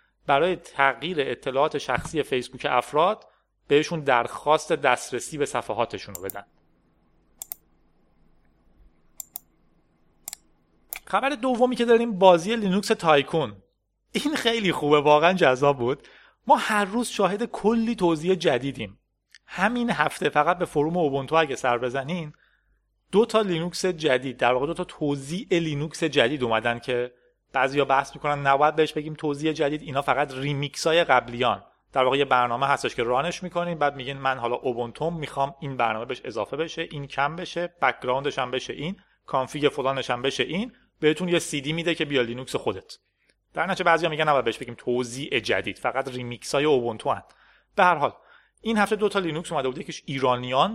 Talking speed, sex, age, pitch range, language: 155 wpm, male, 30-49, 130-185 Hz, Persian